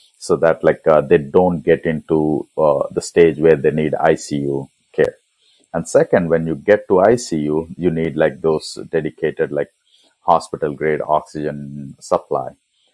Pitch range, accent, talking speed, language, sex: 75-85 Hz, Indian, 155 wpm, English, male